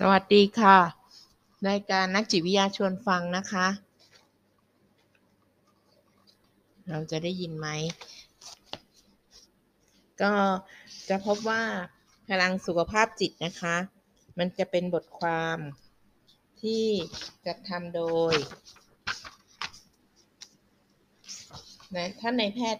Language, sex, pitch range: Thai, female, 160-200 Hz